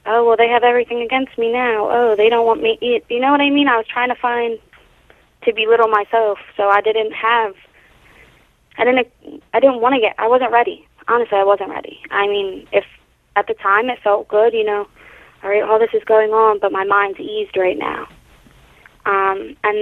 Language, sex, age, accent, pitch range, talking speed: English, female, 20-39, American, 200-235 Hz, 215 wpm